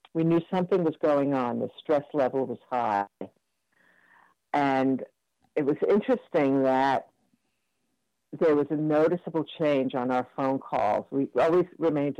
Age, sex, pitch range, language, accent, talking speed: 50-69, female, 125-155 Hz, English, American, 140 wpm